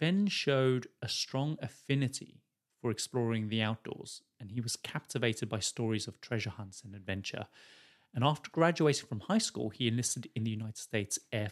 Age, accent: 30-49, British